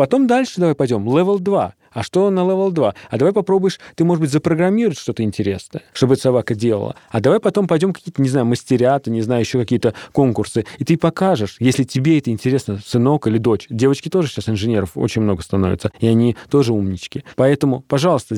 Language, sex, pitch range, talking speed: Russian, male, 115-150 Hz, 195 wpm